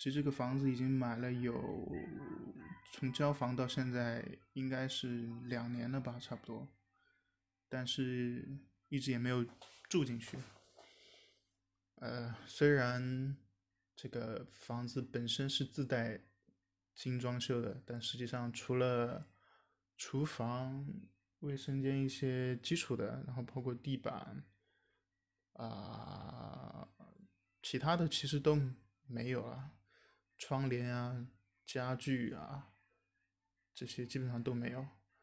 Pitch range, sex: 120-135 Hz, male